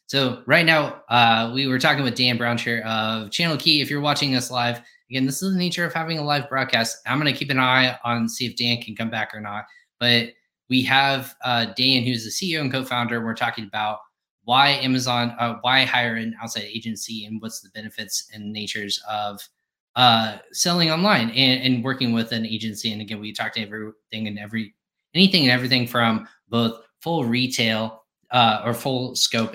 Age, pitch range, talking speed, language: 20-39, 110-130 Hz, 205 wpm, English